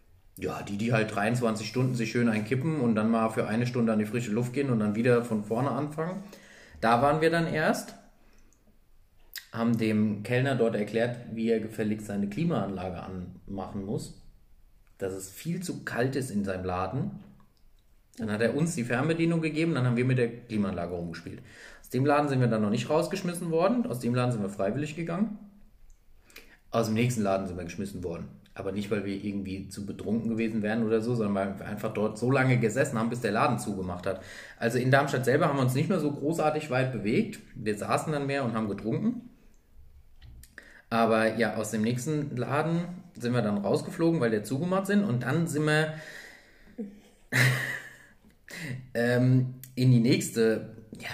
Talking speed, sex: 185 wpm, male